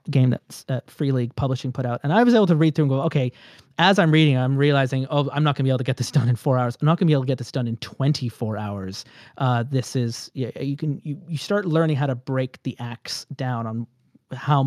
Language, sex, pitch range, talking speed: English, male, 130-160 Hz, 275 wpm